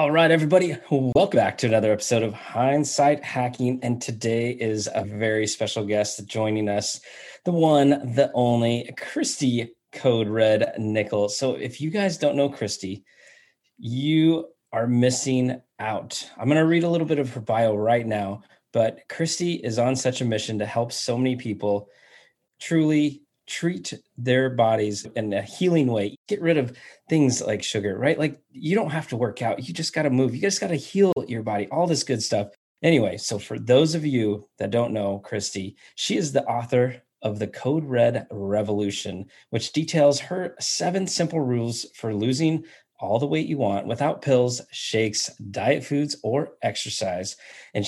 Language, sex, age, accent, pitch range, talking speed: English, male, 20-39, American, 110-145 Hz, 175 wpm